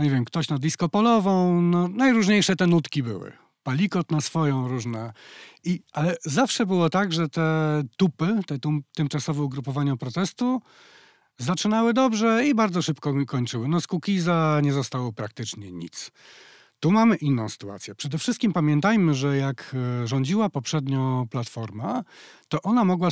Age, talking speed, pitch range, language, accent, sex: 40-59, 150 wpm, 135-175 Hz, Polish, native, male